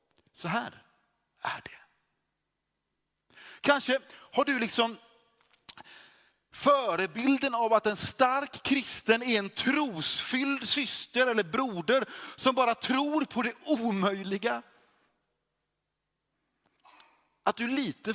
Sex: male